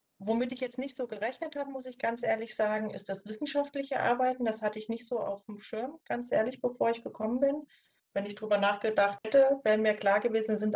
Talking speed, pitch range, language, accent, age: 225 wpm, 195-235 Hz, German, German, 30-49